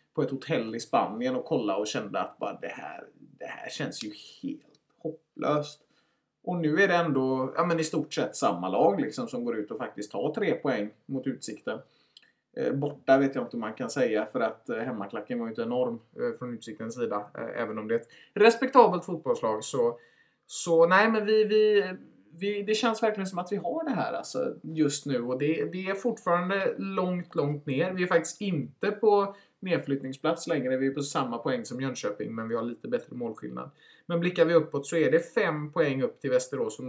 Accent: Norwegian